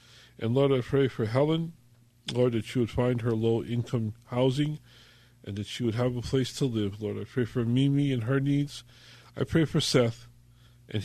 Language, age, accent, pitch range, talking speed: English, 50-69, American, 110-125 Hz, 195 wpm